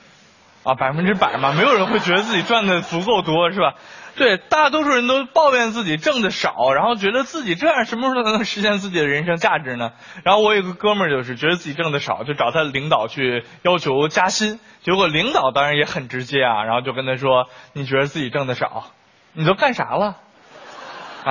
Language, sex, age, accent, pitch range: Chinese, male, 20-39, native, 150-235 Hz